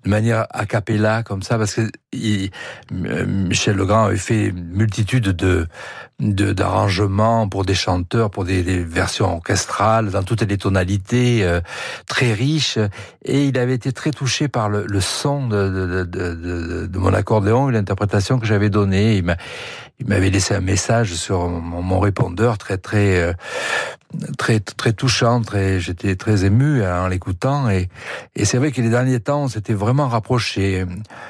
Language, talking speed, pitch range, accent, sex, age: French, 165 wpm, 95-115 Hz, French, male, 60-79